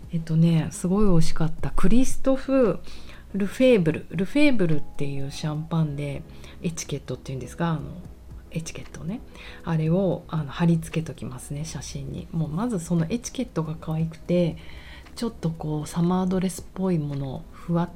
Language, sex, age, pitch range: Japanese, female, 40-59, 140-180 Hz